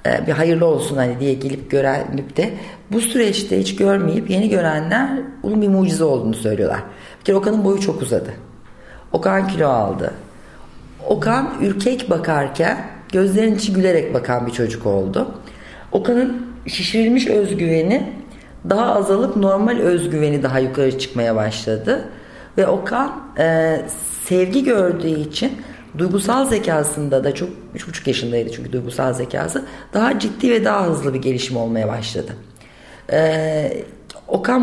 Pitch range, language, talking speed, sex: 130-210 Hz, Turkish, 125 wpm, female